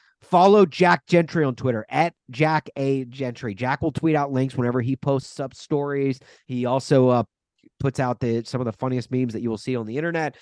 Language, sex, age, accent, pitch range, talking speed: English, male, 30-49, American, 120-155 Hz, 215 wpm